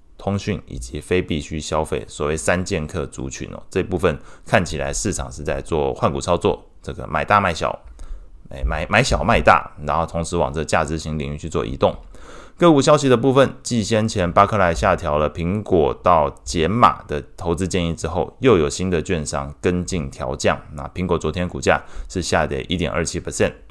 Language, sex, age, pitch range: Chinese, male, 20-39, 75-100 Hz